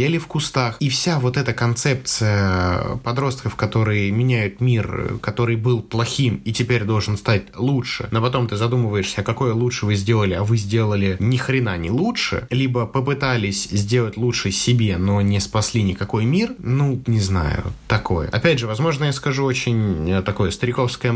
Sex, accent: male, native